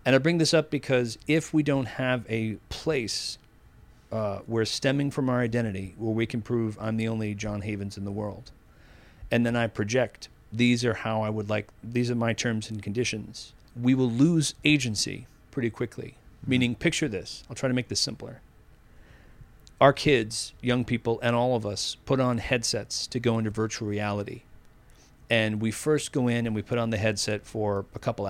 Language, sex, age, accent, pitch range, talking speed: English, male, 40-59, American, 105-125 Hz, 195 wpm